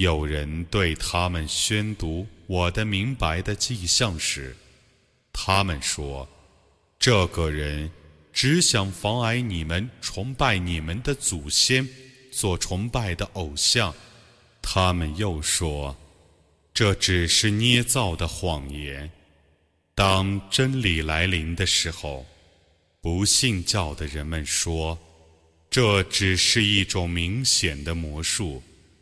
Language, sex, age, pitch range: Arabic, male, 30-49, 80-105 Hz